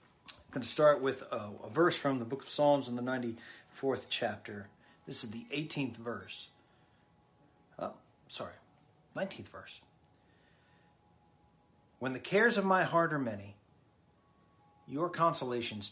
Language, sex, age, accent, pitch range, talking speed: English, male, 40-59, American, 120-145 Hz, 135 wpm